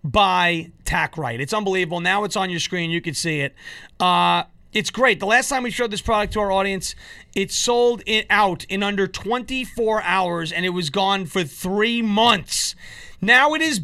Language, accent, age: English, American, 30-49